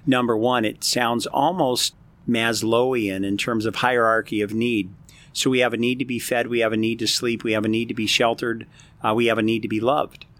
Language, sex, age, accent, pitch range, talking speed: English, male, 50-69, American, 115-140 Hz, 235 wpm